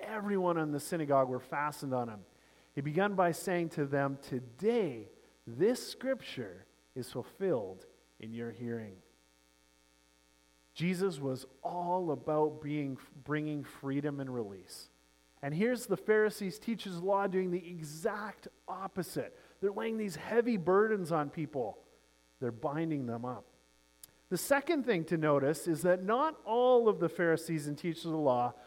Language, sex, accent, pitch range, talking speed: English, male, American, 125-195 Hz, 150 wpm